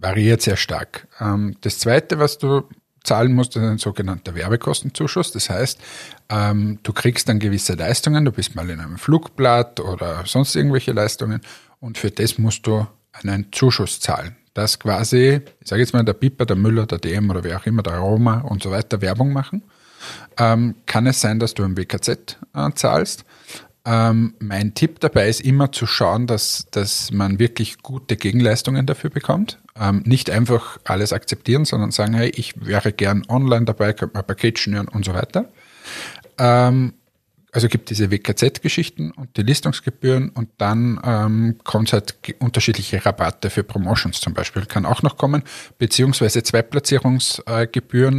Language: German